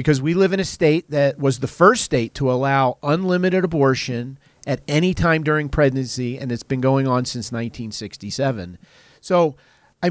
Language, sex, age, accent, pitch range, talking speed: English, male, 40-59, American, 130-165 Hz, 170 wpm